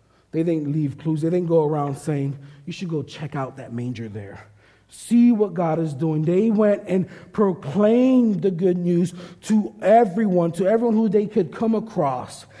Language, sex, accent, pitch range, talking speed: English, male, American, 120-170 Hz, 180 wpm